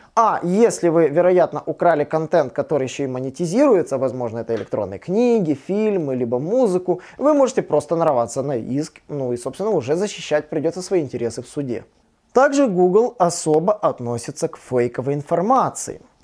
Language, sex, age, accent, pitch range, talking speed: Russian, male, 20-39, native, 135-195 Hz, 150 wpm